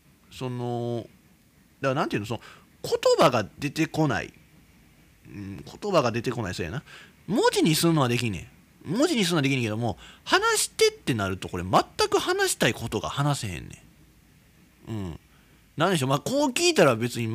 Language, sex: Japanese, male